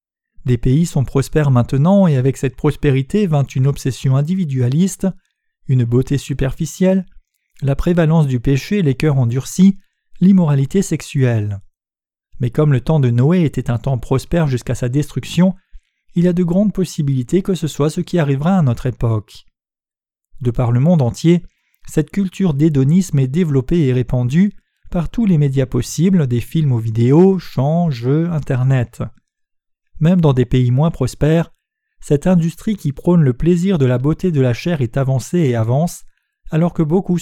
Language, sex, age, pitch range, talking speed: French, male, 40-59, 130-175 Hz, 165 wpm